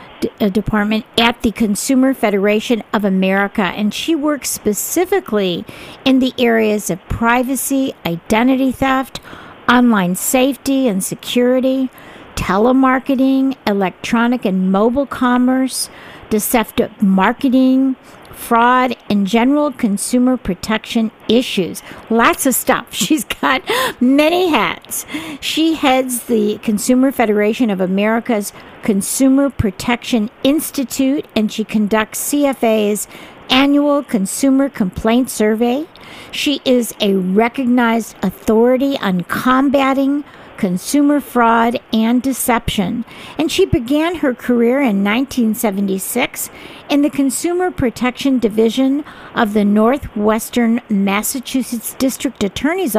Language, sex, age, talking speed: English, female, 50-69, 100 wpm